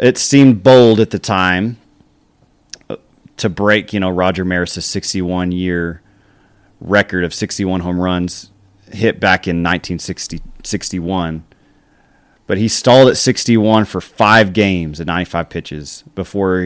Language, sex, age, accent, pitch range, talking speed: English, male, 30-49, American, 90-110 Hz, 125 wpm